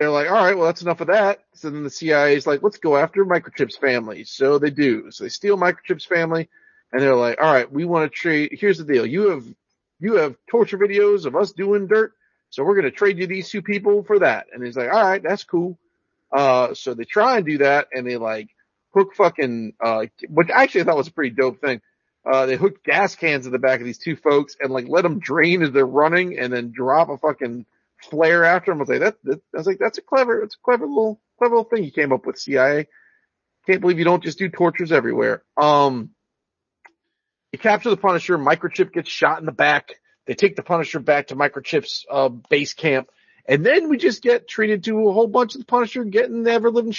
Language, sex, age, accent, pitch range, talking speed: English, male, 40-59, American, 145-215 Hz, 240 wpm